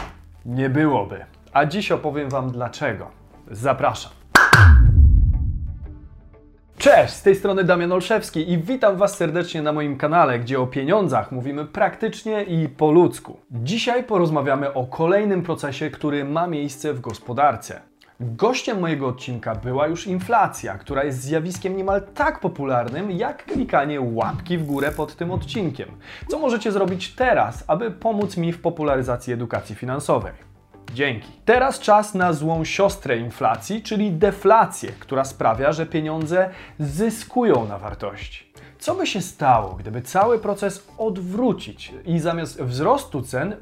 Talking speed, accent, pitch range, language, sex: 135 wpm, native, 125-195 Hz, Polish, male